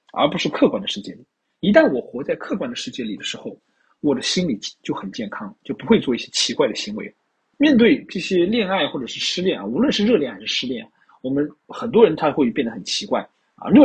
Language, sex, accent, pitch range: Chinese, male, native, 155-240 Hz